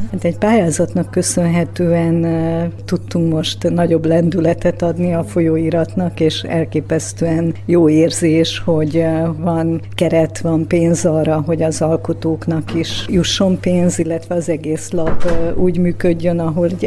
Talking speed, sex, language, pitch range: 120 wpm, female, Hungarian, 165-185 Hz